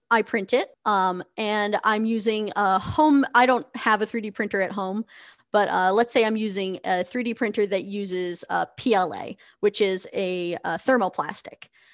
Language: English